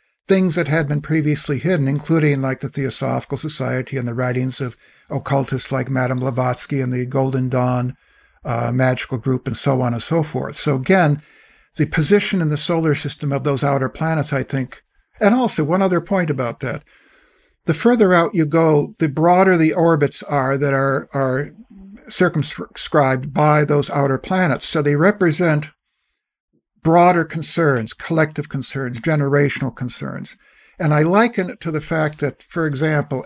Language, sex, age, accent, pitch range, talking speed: English, male, 60-79, American, 135-165 Hz, 160 wpm